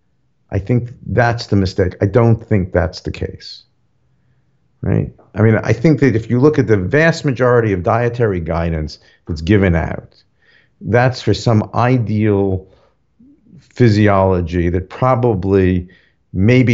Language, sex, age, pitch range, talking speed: English, male, 50-69, 90-115 Hz, 135 wpm